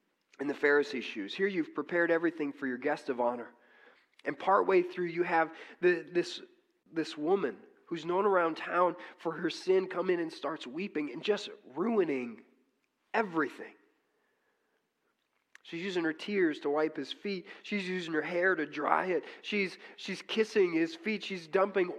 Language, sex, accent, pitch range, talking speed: English, male, American, 155-255 Hz, 165 wpm